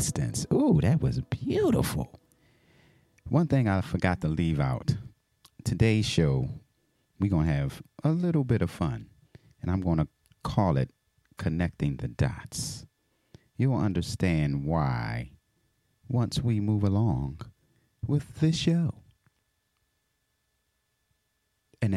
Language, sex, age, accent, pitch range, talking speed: English, male, 30-49, American, 85-135 Hz, 115 wpm